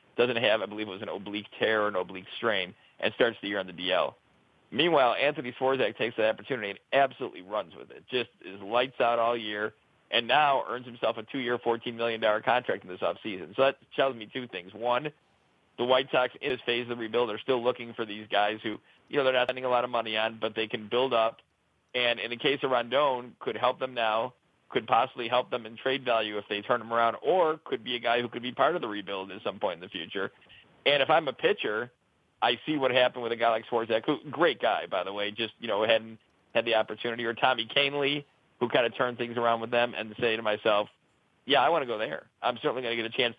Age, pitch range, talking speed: 40-59, 110-125 Hz, 250 wpm